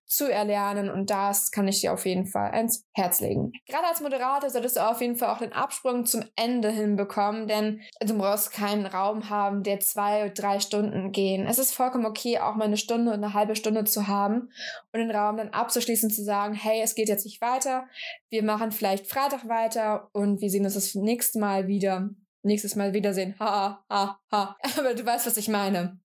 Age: 20-39